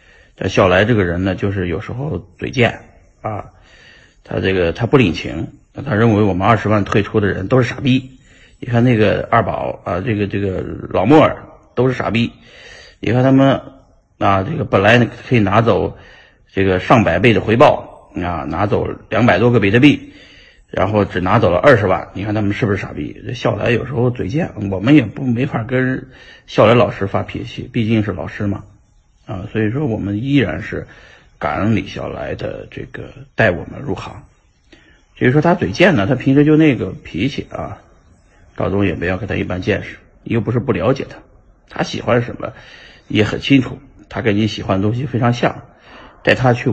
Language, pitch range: Chinese, 100-125 Hz